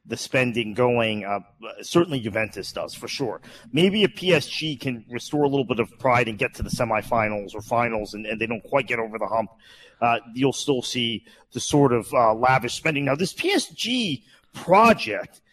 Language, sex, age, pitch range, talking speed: English, male, 40-59, 115-160 Hz, 195 wpm